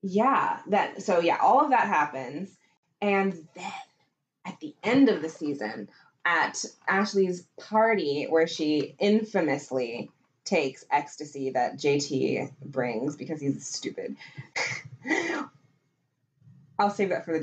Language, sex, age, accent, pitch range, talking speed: English, female, 20-39, American, 170-250 Hz, 120 wpm